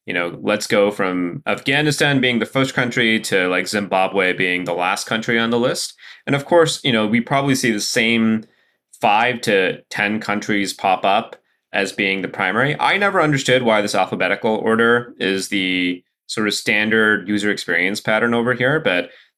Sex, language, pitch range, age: male, English, 95-120 Hz, 30-49